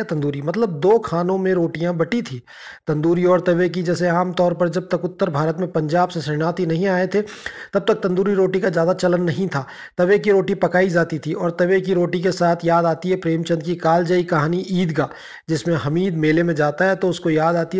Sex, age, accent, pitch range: male, 30-49, native, 170-195 Hz